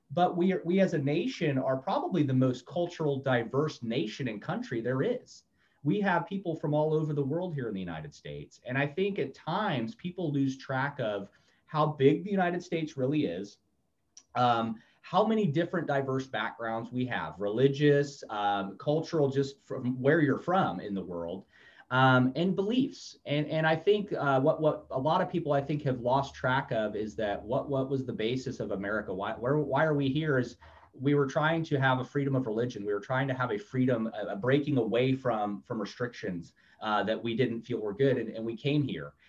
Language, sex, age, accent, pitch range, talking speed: English, male, 30-49, American, 120-155 Hz, 210 wpm